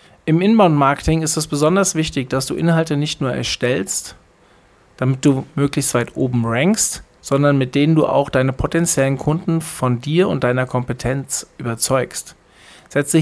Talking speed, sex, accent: 150 wpm, male, German